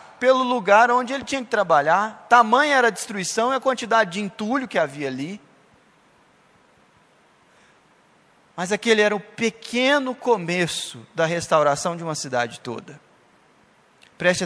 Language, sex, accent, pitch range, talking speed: Portuguese, male, Brazilian, 160-220 Hz, 135 wpm